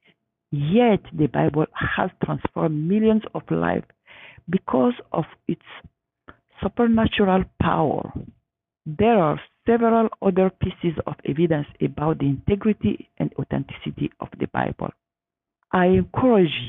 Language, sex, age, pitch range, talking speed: English, female, 50-69, 145-200 Hz, 110 wpm